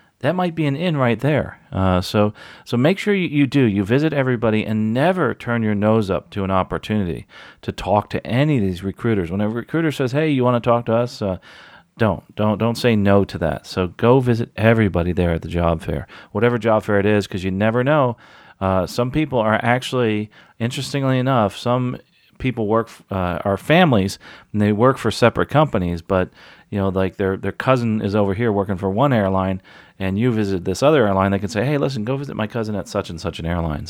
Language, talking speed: English, 220 wpm